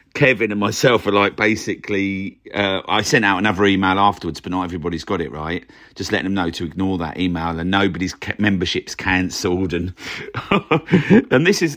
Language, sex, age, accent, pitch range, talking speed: English, male, 50-69, British, 90-110 Hz, 180 wpm